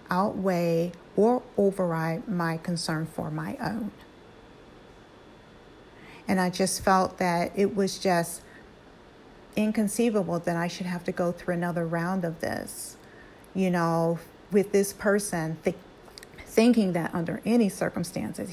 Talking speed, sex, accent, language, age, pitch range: 125 wpm, female, American, English, 40-59, 180-225 Hz